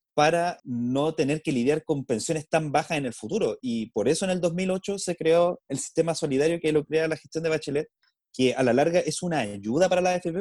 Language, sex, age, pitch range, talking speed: Spanish, male, 30-49, 125-170 Hz, 230 wpm